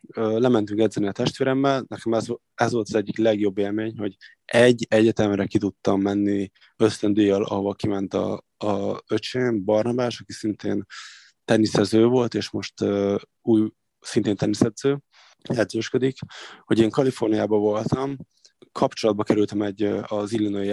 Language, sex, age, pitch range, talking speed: Hungarian, male, 20-39, 105-120 Hz, 130 wpm